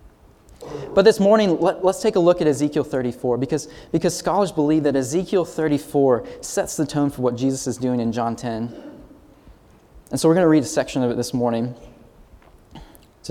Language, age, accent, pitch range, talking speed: English, 20-39, American, 135-205 Hz, 190 wpm